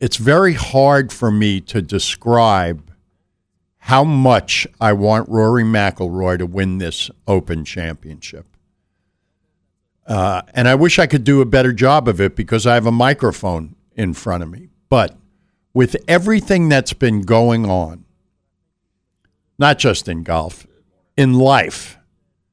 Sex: male